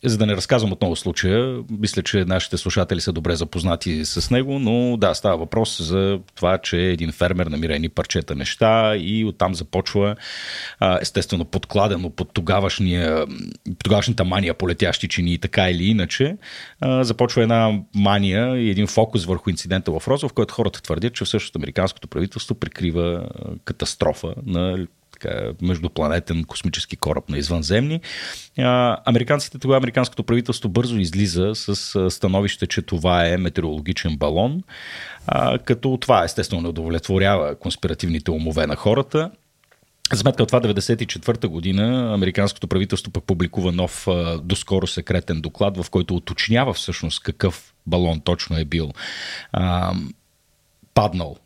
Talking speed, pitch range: 135 wpm, 90-115 Hz